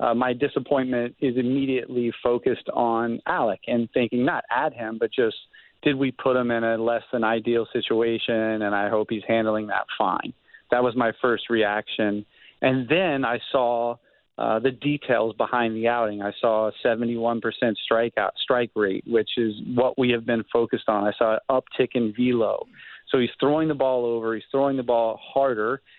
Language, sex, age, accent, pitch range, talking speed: English, male, 40-59, American, 115-140 Hz, 180 wpm